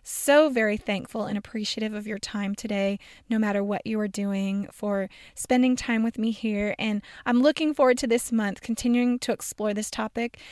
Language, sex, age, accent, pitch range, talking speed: English, female, 20-39, American, 200-235 Hz, 190 wpm